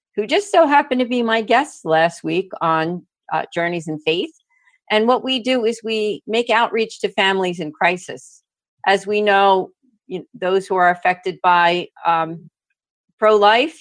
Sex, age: female, 40-59